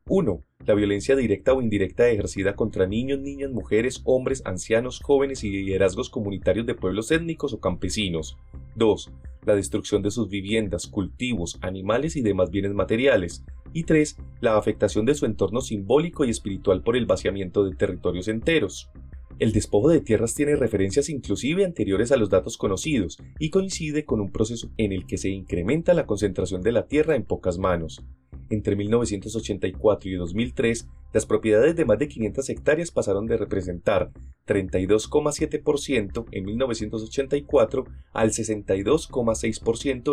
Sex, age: male, 30-49